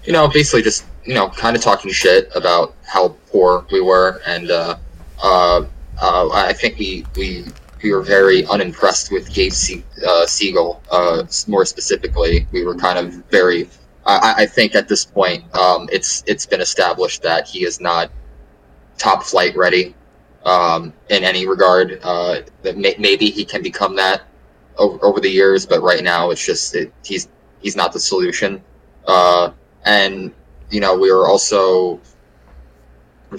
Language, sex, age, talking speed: English, male, 20-39, 165 wpm